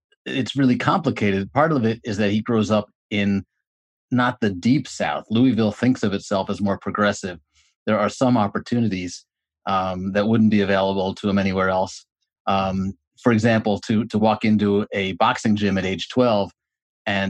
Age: 30-49